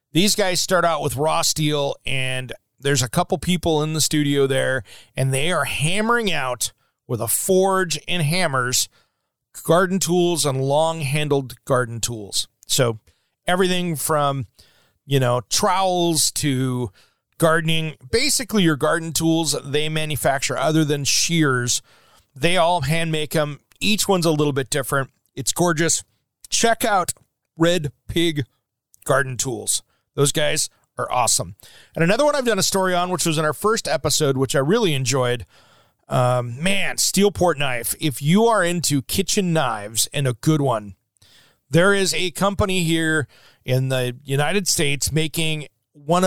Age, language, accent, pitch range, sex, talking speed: 40-59, English, American, 130-170 Hz, male, 150 wpm